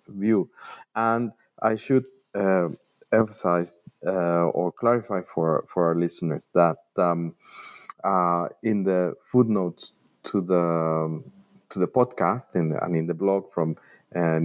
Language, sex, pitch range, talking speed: English, male, 85-105 Hz, 145 wpm